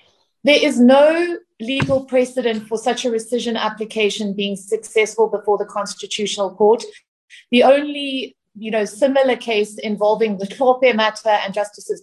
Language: English